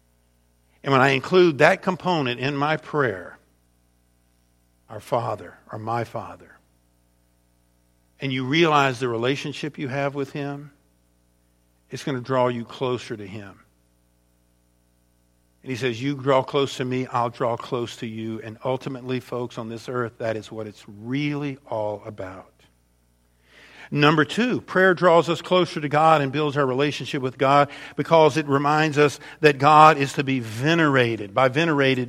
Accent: American